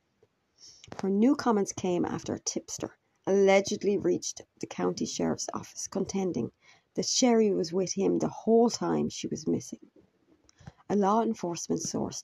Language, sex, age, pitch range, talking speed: English, female, 40-59, 175-220 Hz, 140 wpm